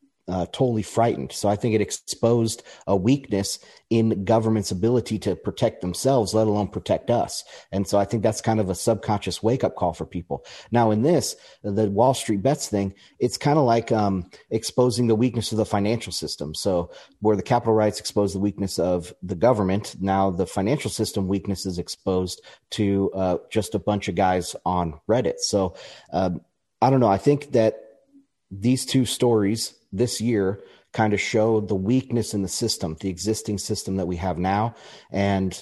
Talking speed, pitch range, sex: 185 wpm, 95-110 Hz, male